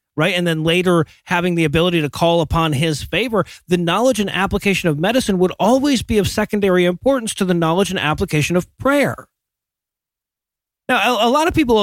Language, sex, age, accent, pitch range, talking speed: English, male, 30-49, American, 165-215 Hz, 185 wpm